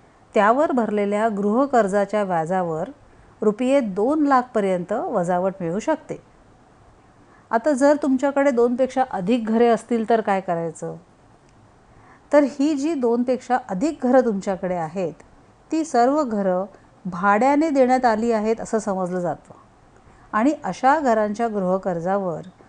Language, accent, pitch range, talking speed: Marathi, native, 190-250 Hz, 110 wpm